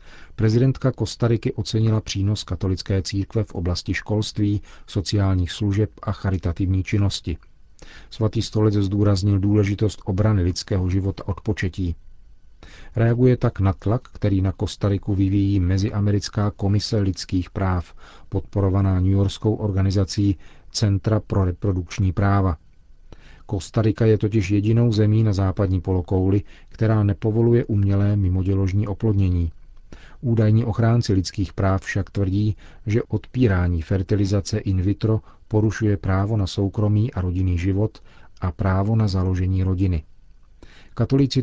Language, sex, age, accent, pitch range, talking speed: Czech, male, 40-59, native, 95-110 Hz, 115 wpm